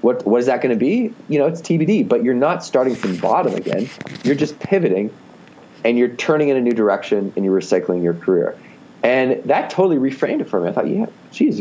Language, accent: English, American